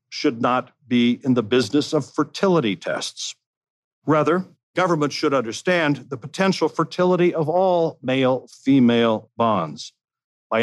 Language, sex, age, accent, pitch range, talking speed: English, male, 50-69, American, 120-160 Hz, 120 wpm